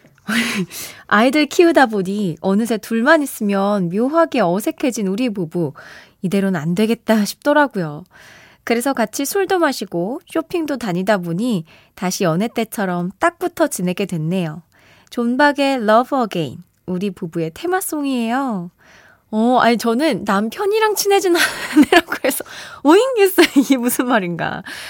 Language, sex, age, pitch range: Korean, female, 20-39, 190-295 Hz